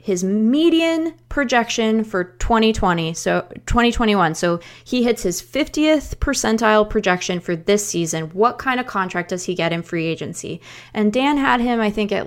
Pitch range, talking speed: 185-270 Hz, 165 wpm